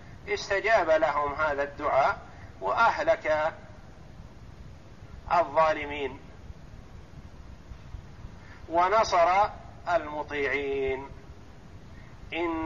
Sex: male